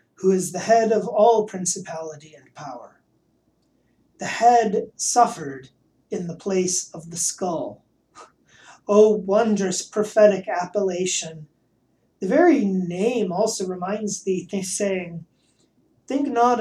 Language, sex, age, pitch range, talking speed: English, male, 30-49, 170-210 Hz, 110 wpm